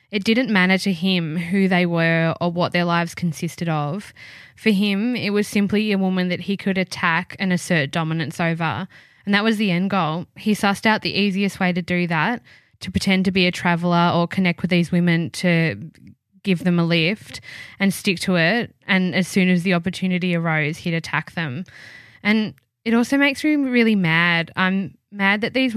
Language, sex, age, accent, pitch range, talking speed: English, female, 10-29, Australian, 170-195 Hz, 200 wpm